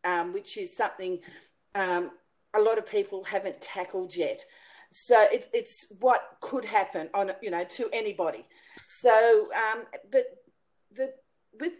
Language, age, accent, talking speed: English, 40-59, Australian, 140 wpm